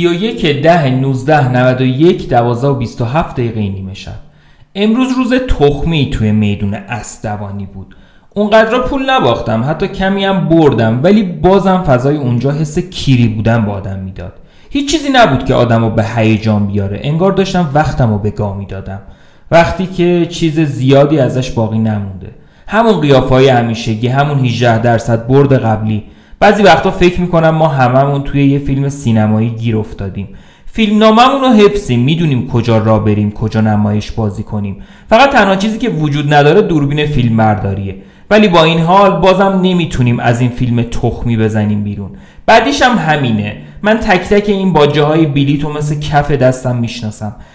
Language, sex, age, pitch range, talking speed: Persian, male, 30-49, 110-170 Hz, 155 wpm